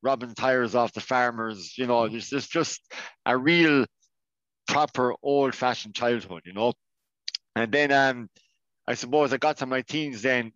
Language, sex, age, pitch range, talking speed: English, male, 50-69, 110-130 Hz, 155 wpm